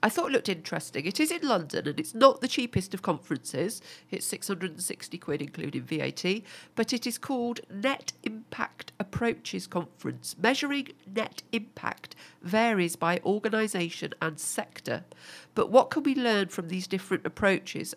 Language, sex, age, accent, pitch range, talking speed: English, female, 50-69, British, 160-210 Hz, 155 wpm